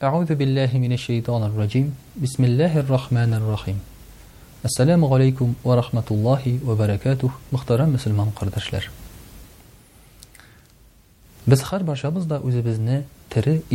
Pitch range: 105-140 Hz